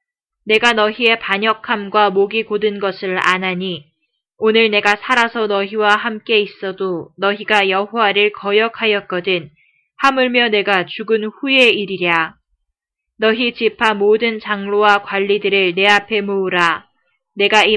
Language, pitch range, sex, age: Korean, 190-225 Hz, female, 20-39